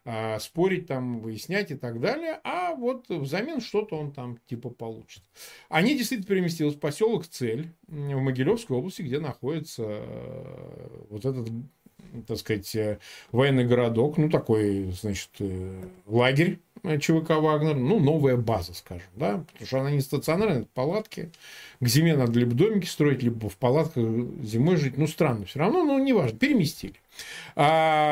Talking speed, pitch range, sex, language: 145 wpm, 125-185 Hz, male, Russian